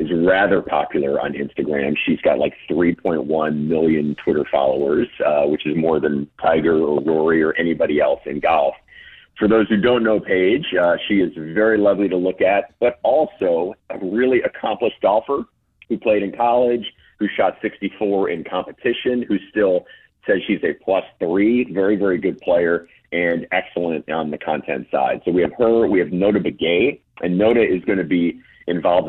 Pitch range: 80-100 Hz